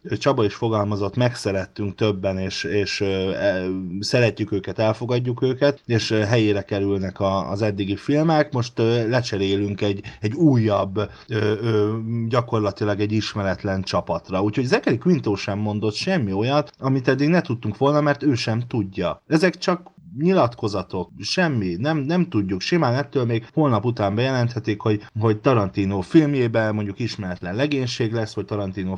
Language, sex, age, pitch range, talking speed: Hungarian, male, 30-49, 100-125 Hz, 135 wpm